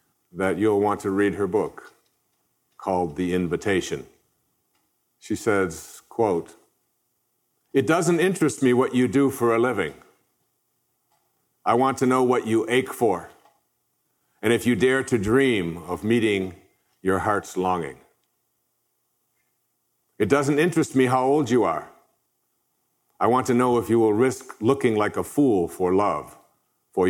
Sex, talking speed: male, 145 wpm